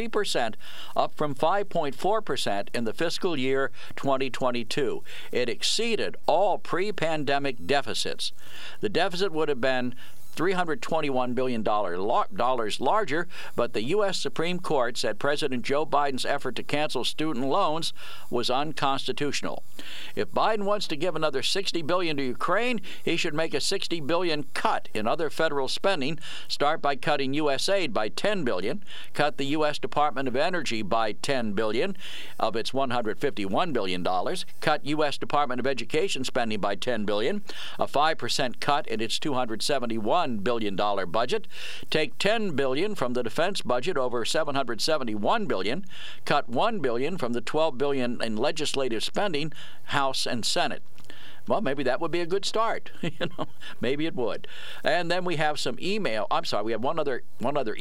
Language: English